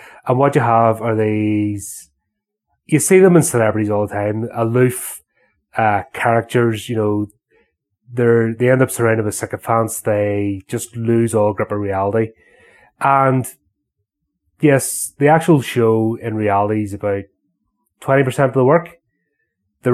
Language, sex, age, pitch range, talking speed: English, male, 30-49, 105-125 Hz, 140 wpm